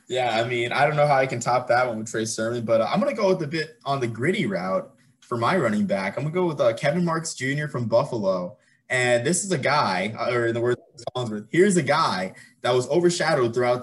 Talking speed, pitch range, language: 255 wpm, 110-145 Hz, English